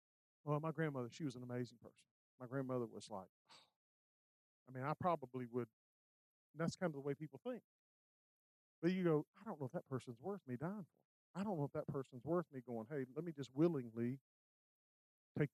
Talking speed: 210 wpm